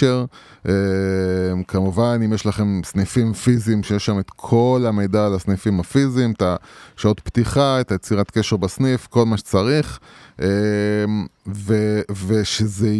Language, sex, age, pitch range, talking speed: Hebrew, male, 20-39, 95-130 Hz, 130 wpm